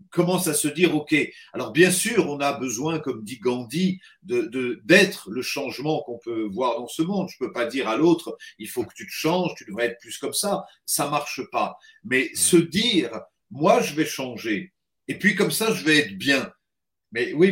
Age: 50-69